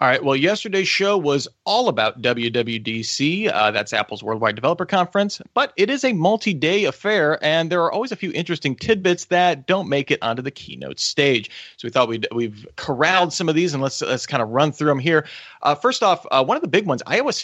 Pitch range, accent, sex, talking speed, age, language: 115-165 Hz, American, male, 225 wpm, 30-49, English